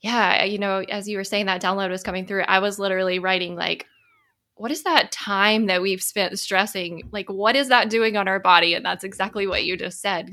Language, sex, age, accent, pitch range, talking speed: English, female, 20-39, American, 185-215 Hz, 230 wpm